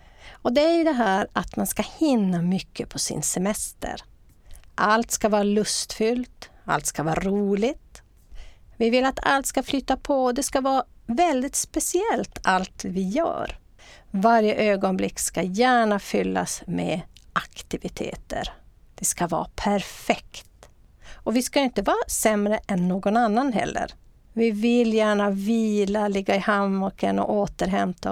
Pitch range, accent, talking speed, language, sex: 185-245 Hz, native, 145 wpm, Swedish, female